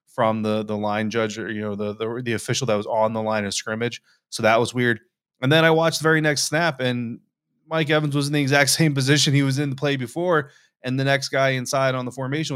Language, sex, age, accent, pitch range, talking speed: English, male, 20-39, American, 105-125 Hz, 260 wpm